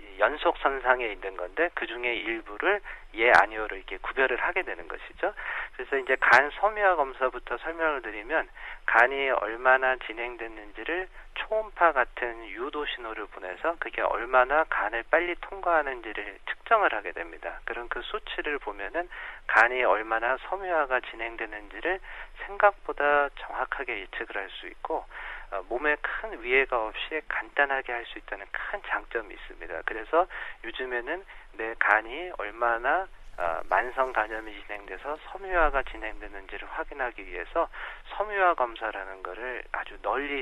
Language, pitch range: Korean, 115-150 Hz